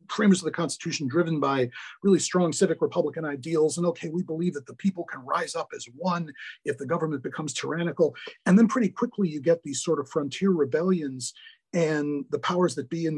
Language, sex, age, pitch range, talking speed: English, male, 40-59, 145-195 Hz, 200 wpm